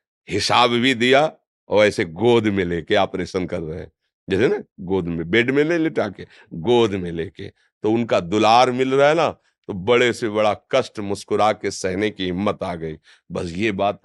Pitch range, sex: 100-145 Hz, male